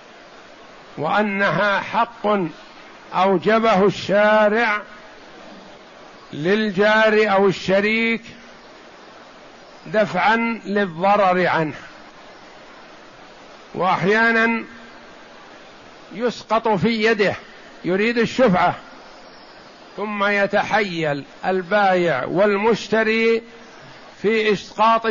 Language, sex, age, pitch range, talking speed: Arabic, male, 60-79, 190-225 Hz, 55 wpm